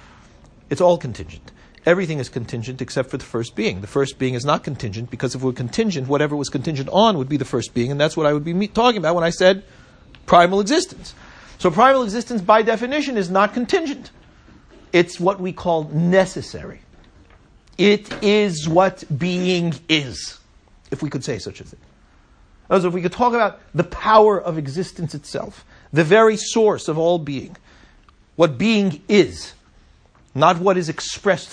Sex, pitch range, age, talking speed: male, 125-185 Hz, 50-69, 175 wpm